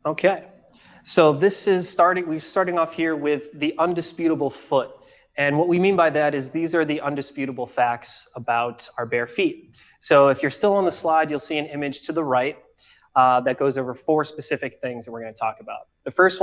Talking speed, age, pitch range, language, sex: 210 wpm, 20-39, 130-165 Hz, English, male